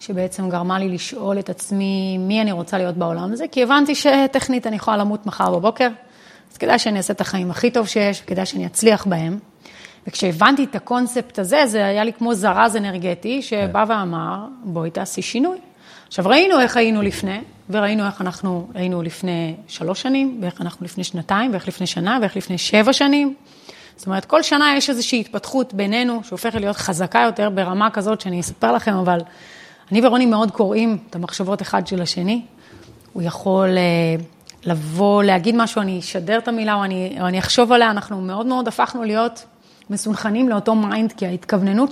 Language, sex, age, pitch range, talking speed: Hebrew, female, 30-49, 185-230 Hz, 160 wpm